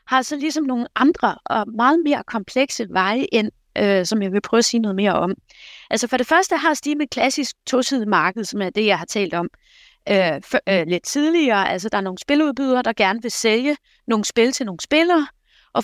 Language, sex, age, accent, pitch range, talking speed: Danish, female, 30-49, native, 220-295 Hz, 215 wpm